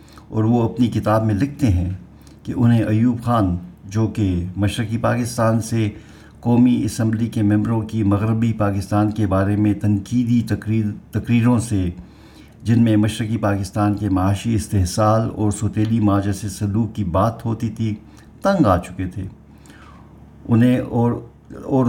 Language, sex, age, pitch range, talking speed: Urdu, male, 50-69, 95-115 Hz, 145 wpm